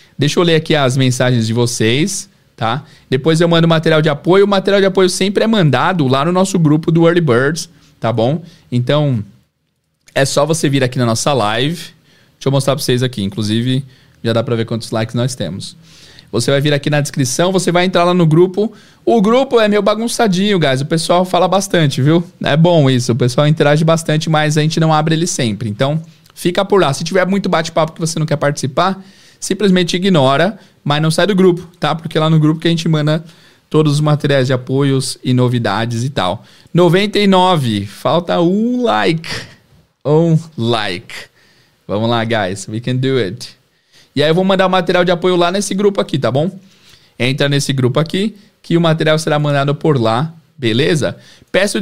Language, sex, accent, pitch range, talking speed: Portuguese, male, Brazilian, 130-175 Hz, 200 wpm